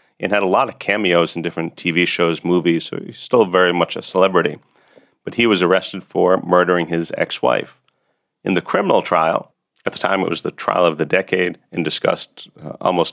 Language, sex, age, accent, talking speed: English, male, 40-59, American, 200 wpm